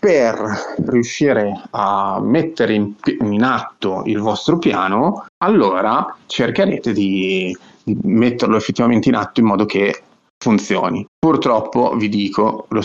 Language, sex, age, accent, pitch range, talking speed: Italian, male, 30-49, native, 100-120 Hz, 115 wpm